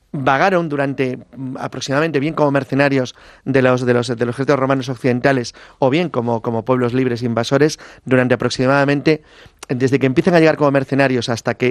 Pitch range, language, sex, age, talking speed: 125-155 Hz, English, male, 30-49, 170 wpm